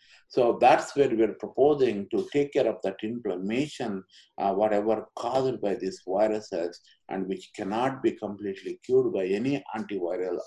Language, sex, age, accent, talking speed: English, male, 50-69, Indian, 150 wpm